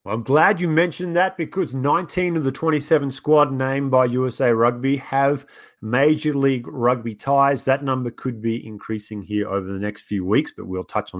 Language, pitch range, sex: English, 115-145 Hz, male